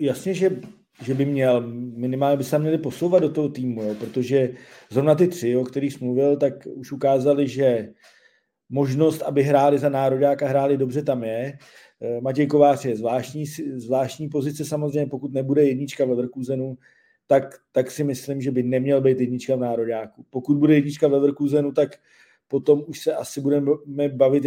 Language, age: Czech, 40-59